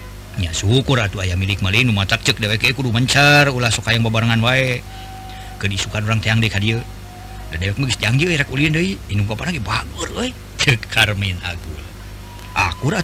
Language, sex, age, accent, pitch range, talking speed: Indonesian, male, 50-69, native, 100-130 Hz, 160 wpm